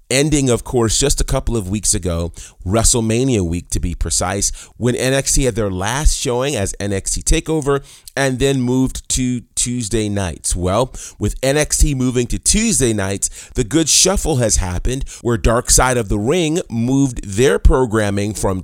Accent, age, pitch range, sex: American, 30-49, 100-140 Hz, male